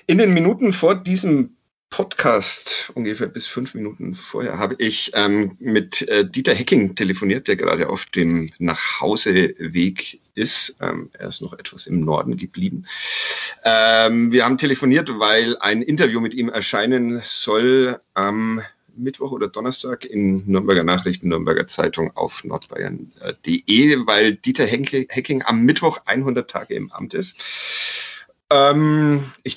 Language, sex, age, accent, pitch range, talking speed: German, male, 40-59, German, 100-155 Hz, 140 wpm